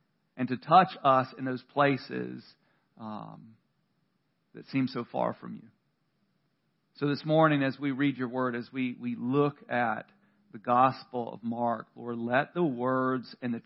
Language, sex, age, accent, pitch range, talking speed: English, male, 40-59, American, 125-165 Hz, 165 wpm